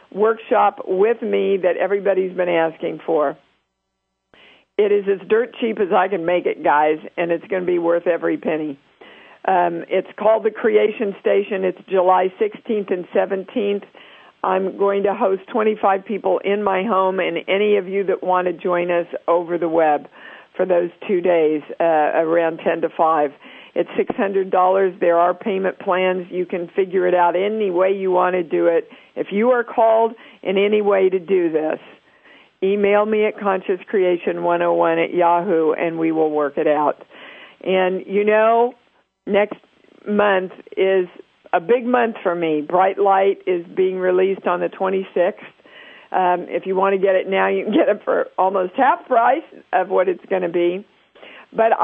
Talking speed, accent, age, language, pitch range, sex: 175 wpm, American, 50-69, English, 175-210 Hz, female